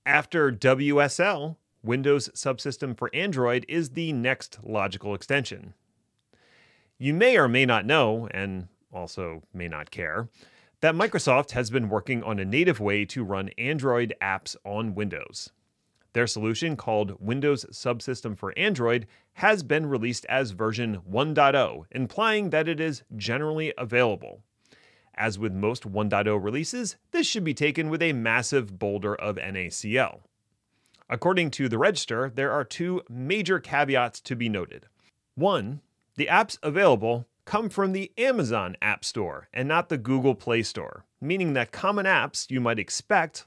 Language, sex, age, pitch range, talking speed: English, male, 30-49, 110-150 Hz, 145 wpm